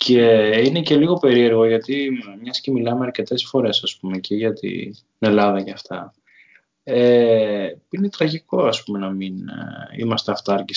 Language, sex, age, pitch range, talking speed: Greek, male, 20-39, 100-135 Hz, 135 wpm